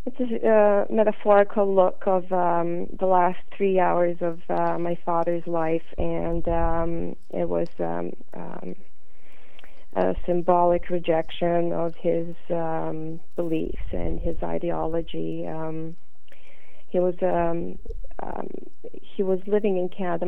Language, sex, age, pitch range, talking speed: English, female, 30-49, 170-200 Hz, 125 wpm